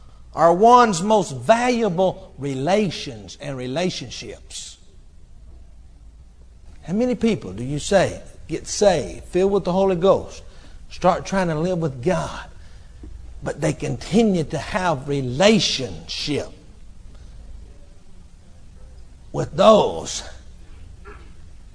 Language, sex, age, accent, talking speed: English, male, 60-79, American, 95 wpm